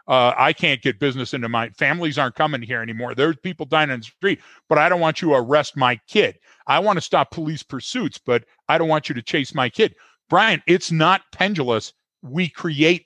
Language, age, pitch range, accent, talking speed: English, 50-69, 125-175 Hz, American, 220 wpm